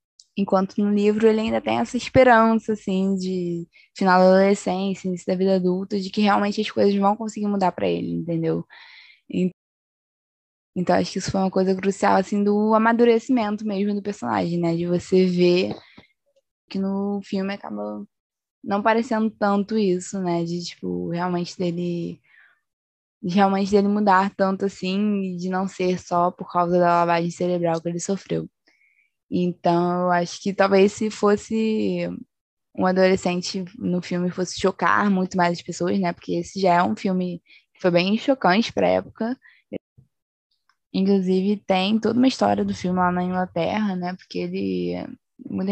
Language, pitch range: Portuguese, 175-200 Hz